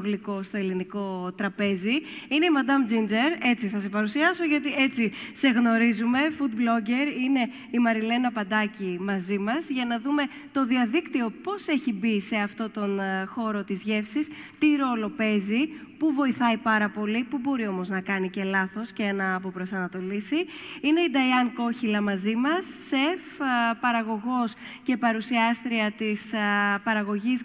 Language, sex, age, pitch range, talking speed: Greek, female, 20-39, 205-265 Hz, 145 wpm